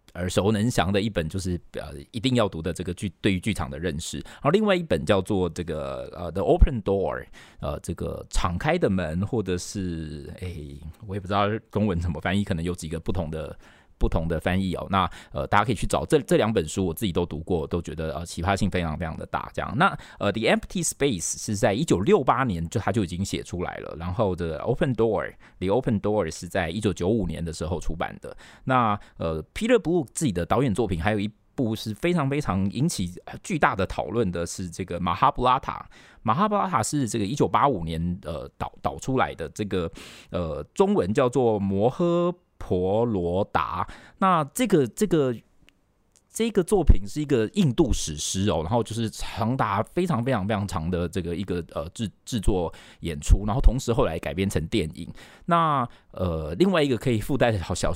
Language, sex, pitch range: Chinese, male, 90-115 Hz